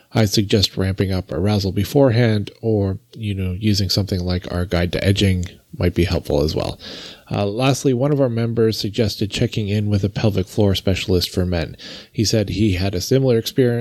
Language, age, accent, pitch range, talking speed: English, 30-49, American, 90-115 Hz, 185 wpm